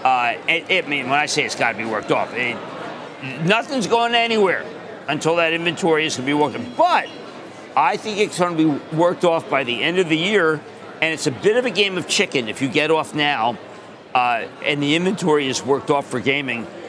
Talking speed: 230 wpm